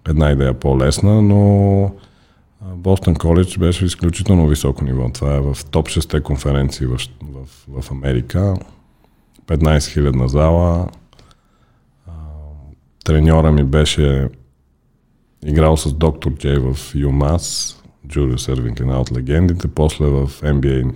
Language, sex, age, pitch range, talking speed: Bulgarian, male, 40-59, 70-85 Hz, 115 wpm